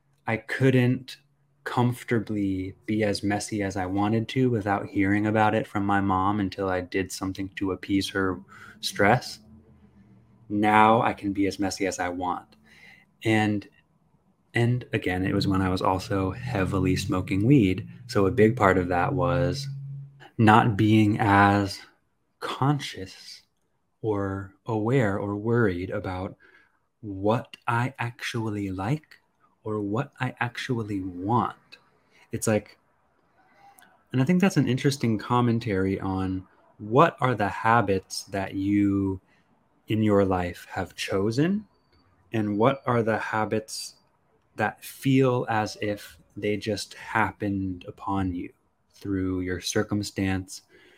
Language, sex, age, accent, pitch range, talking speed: English, male, 20-39, American, 95-115 Hz, 130 wpm